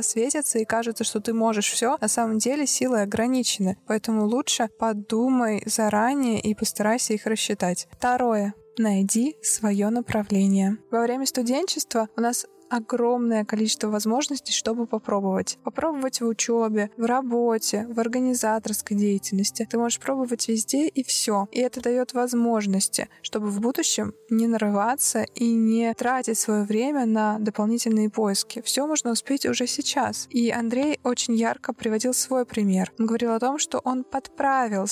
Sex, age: female, 20-39